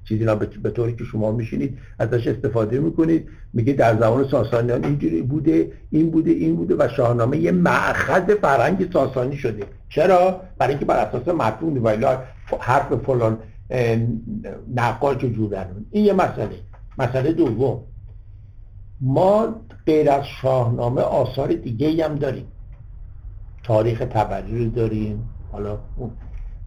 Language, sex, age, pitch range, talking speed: Persian, male, 60-79, 105-135 Hz, 120 wpm